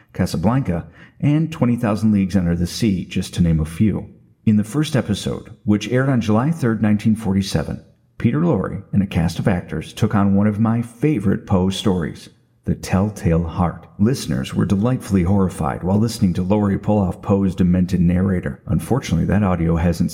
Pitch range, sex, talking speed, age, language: 90-120 Hz, male, 170 wpm, 50-69, English